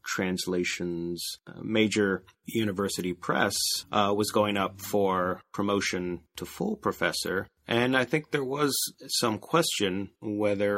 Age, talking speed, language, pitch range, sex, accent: 30-49, 120 wpm, English, 90-110 Hz, male, American